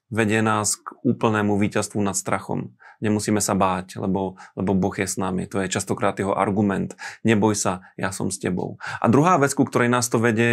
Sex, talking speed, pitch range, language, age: male, 195 wpm, 100-115 Hz, Slovak, 30-49